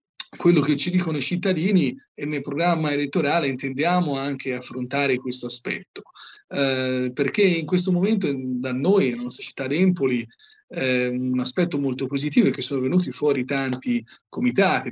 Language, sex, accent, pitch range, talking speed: Italian, male, native, 125-150 Hz, 155 wpm